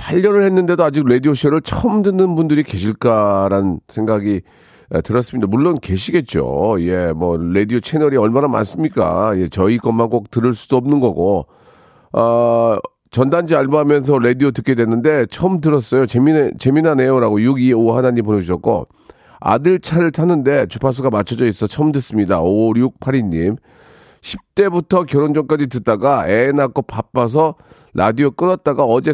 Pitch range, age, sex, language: 105-145 Hz, 40-59, male, Korean